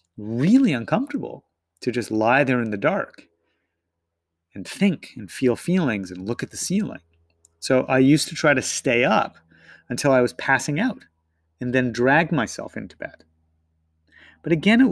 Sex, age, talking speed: male, 30-49, 165 wpm